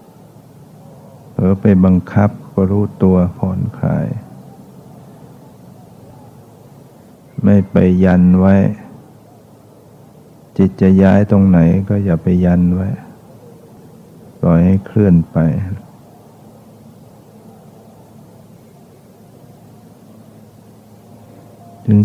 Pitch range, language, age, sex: 95-110 Hz, Thai, 60-79, male